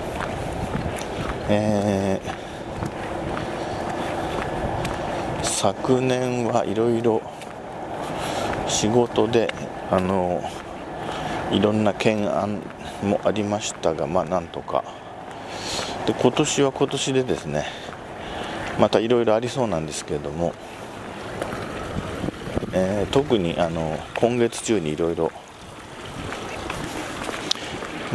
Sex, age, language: male, 50-69, Japanese